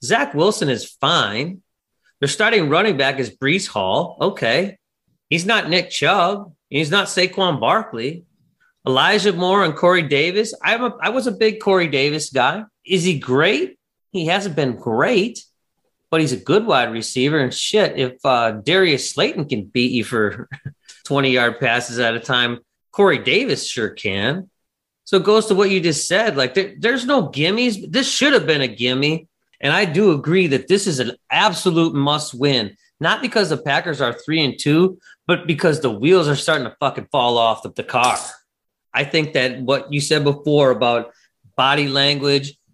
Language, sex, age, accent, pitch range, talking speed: English, male, 30-49, American, 130-185 Hz, 175 wpm